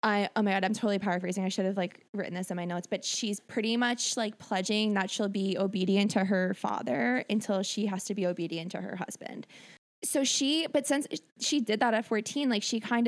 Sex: female